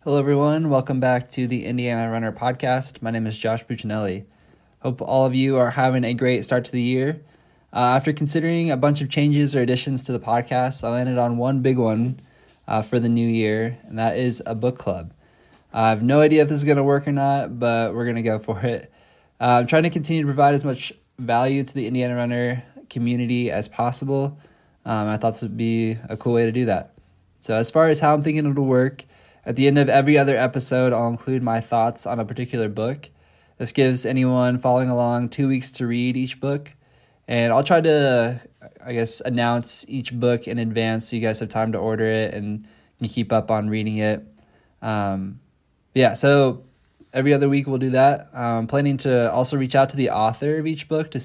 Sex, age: male, 20-39